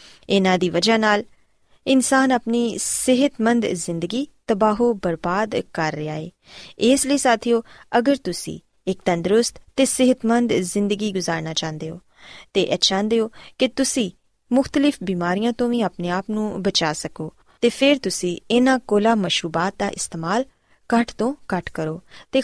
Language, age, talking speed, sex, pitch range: Punjabi, 20-39, 140 wpm, female, 180-250 Hz